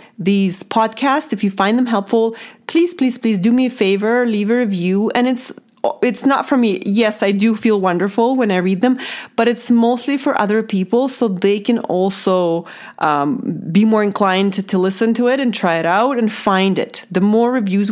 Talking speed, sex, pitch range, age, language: 205 wpm, female, 195-245 Hz, 30-49, English